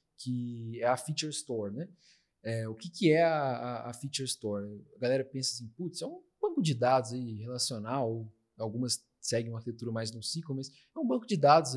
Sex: male